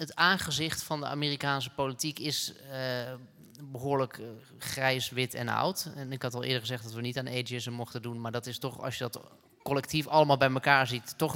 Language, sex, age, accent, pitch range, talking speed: Dutch, male, 20-39, Dutch, 115-135 Hz, 210 wpm